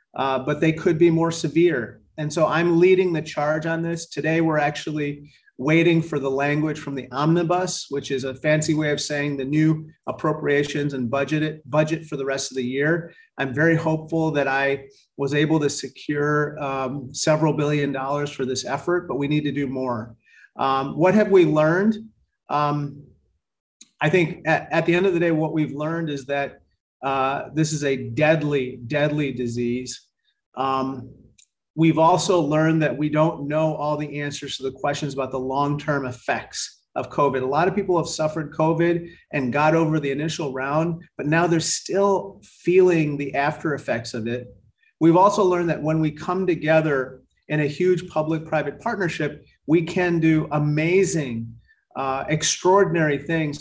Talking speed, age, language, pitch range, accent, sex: 175 wpm, 30-49, English, 140-165 Hz, American, male